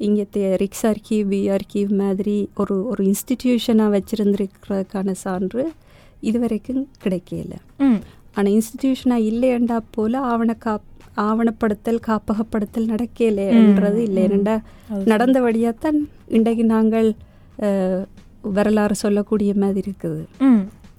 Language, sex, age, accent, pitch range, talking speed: Tamil, female, 20-39, native, 185-230 Hz, 95 wpm